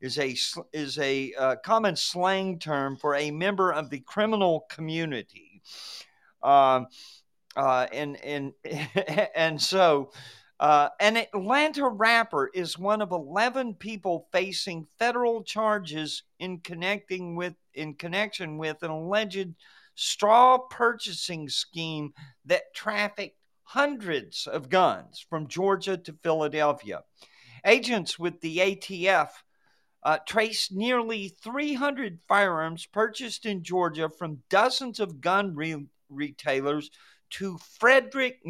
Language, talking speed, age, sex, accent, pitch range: English, 115 wpm, 50-69, male, American, 155-215 Hz